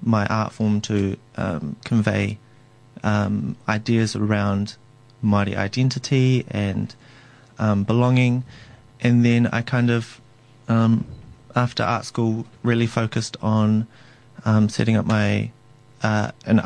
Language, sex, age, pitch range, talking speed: English, male, 30-49, 105-125 Hz, 115 wpm